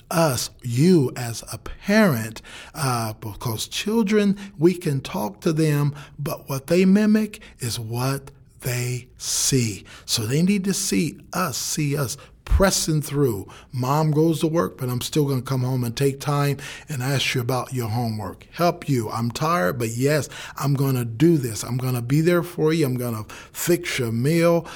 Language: English